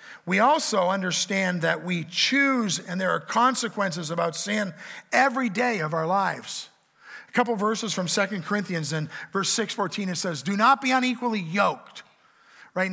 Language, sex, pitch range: English, male, 180-235 Hz